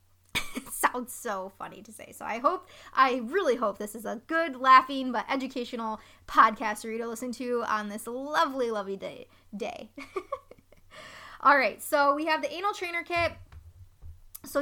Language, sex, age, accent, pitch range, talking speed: English, female, 20-39, American, 215-285 Hz, 160 wpm